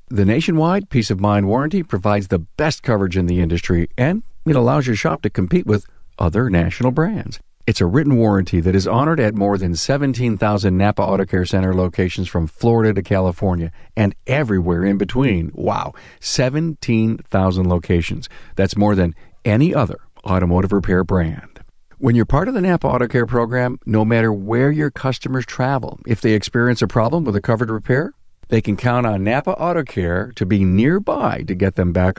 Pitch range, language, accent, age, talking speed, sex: 90-125 Hz, English, American, 50-69, 180 wpm, male